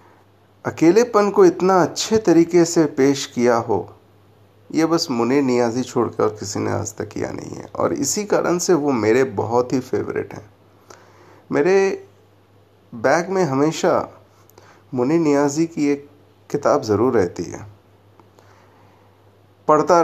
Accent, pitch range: native, 105-150 Hz